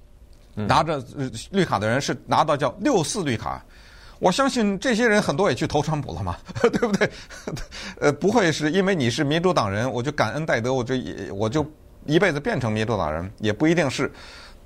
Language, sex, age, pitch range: Chinese, male, 50-69, 105-155 Hz